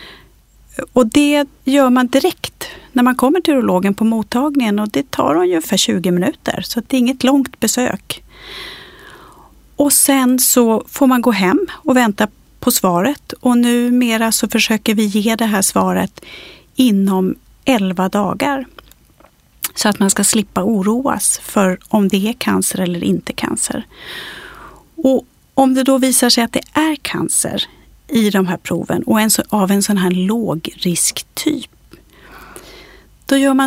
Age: 40-59